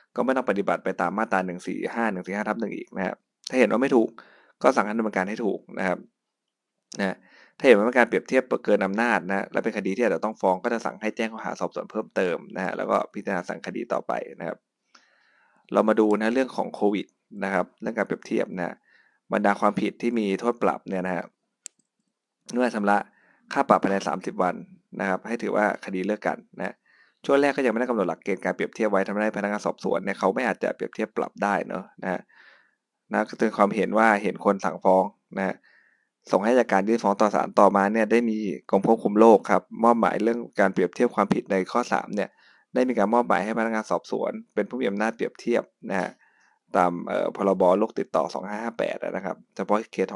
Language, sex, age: Thai, male, 20-39